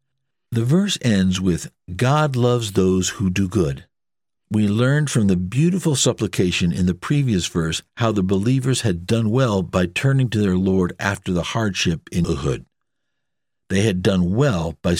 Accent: American